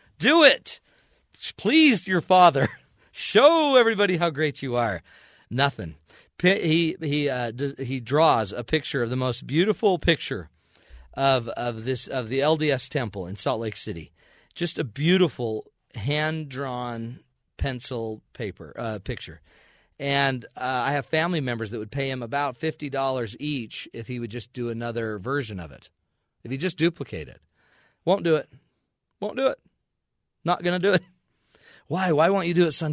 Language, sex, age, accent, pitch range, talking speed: English, male, 40-59, American, 115-155 Hz, 165 wpm